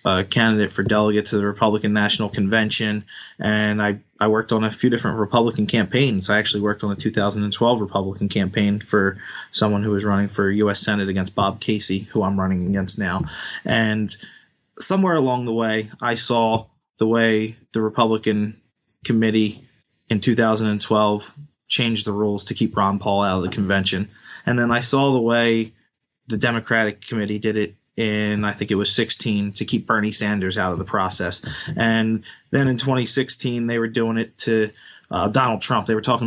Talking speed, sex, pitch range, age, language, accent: 175 wpm, male, 105-115 Hz, 20-39, English, American